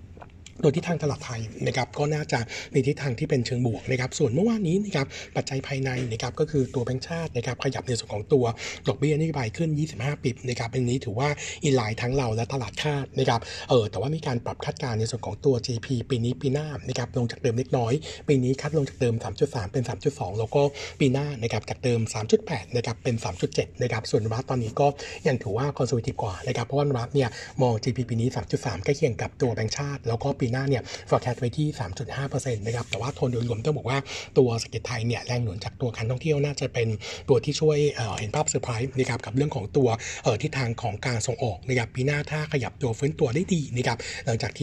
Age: 60-79